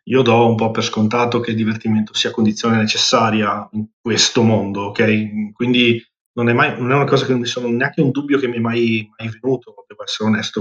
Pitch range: 115-130 Hz